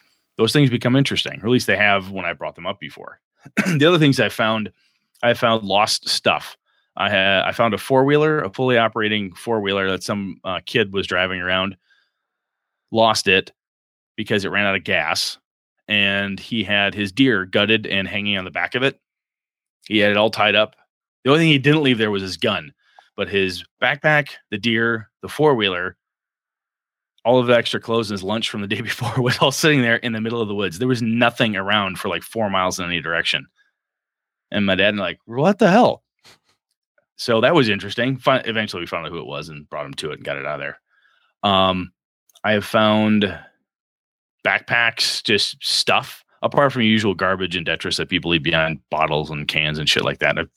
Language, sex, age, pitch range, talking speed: English, male, 20-39, 95-120 Hz, 205 wpm